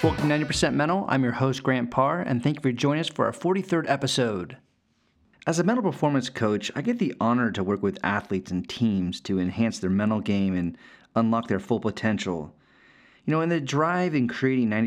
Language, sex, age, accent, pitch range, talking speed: English, male, 40-59, American, 105-135 Hz, 200 wpm